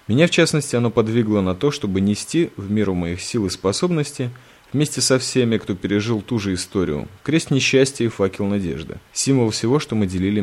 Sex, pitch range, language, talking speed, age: male, 100-135 Hz, Russian, 190 wpm, 20-39